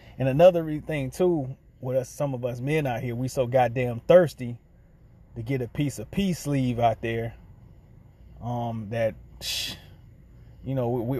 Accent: American